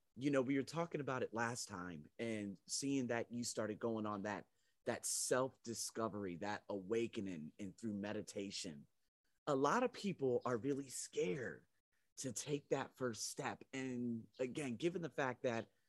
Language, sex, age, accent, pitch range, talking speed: English, male, 30-49, American, 110-135 Hz, 160 wpm